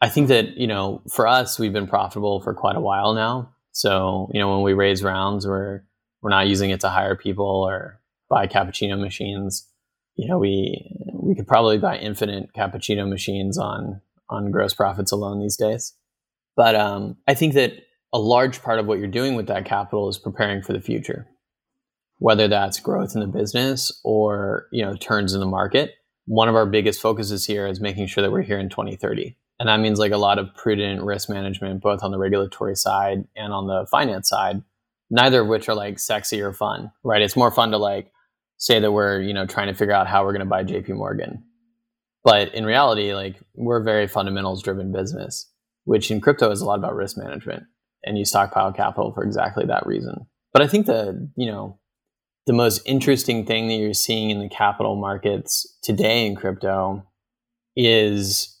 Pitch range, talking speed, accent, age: 100-110 Hz, 200 wpm, American, 20-39